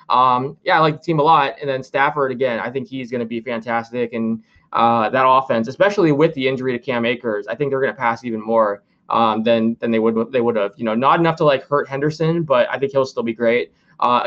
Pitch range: 125-155 Hz